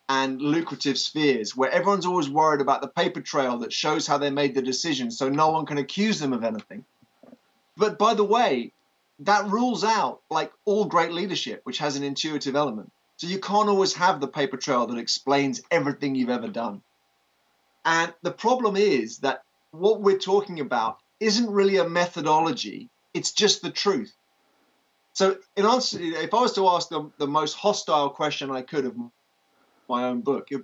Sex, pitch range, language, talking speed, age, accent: male, 135-185 Hz, English, 180 wpm, 20-39, British